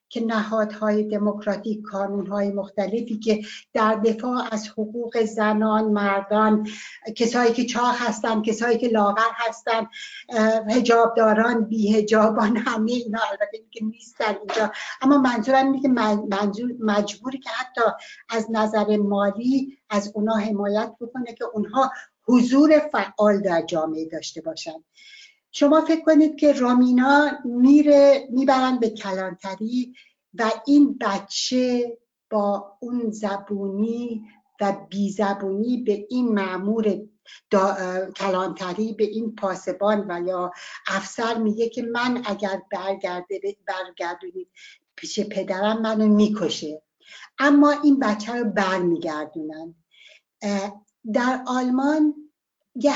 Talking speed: 110 wpm